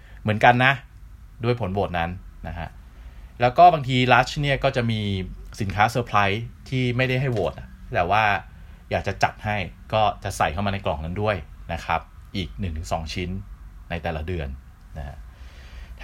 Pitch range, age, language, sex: 90-125 Hz, 30-49, Thai, male